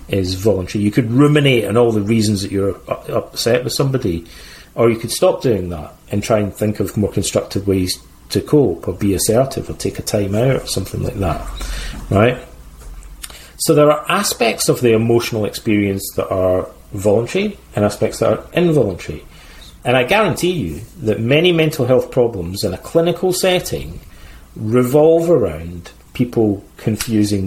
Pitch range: 95-120 Hz